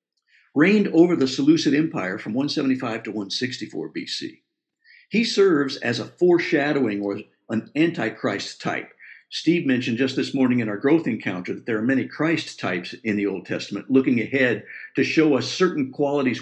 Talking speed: 165 wpm